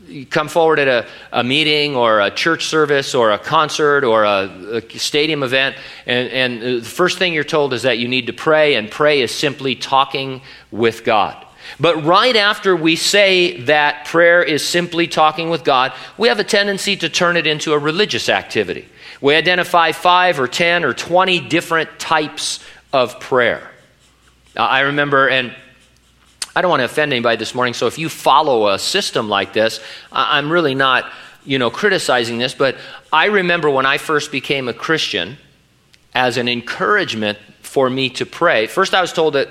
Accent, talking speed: American, 180 wpm